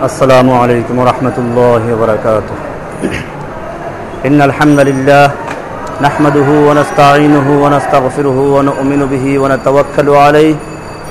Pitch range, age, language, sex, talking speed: 150-170 Hz, 50-69, Bengali, male, 80 wpm